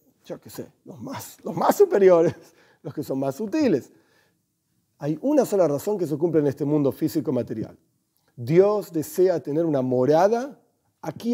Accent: Argentinian